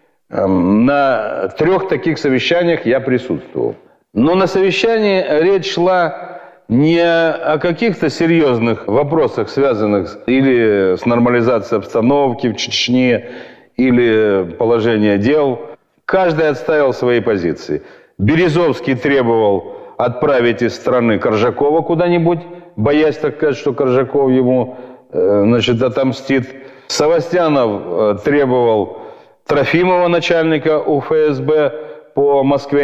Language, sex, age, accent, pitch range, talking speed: Russian, male, 40-59, native, 125-175 Hz, 95 wpm